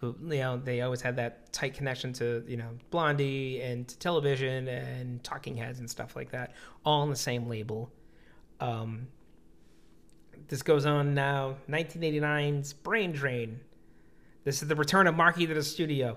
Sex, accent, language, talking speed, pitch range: male, American, English, 165 wpm, 120-150 Hz